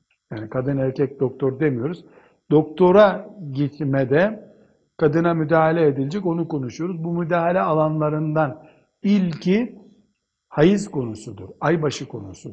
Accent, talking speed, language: native, 95 wpm, Turkish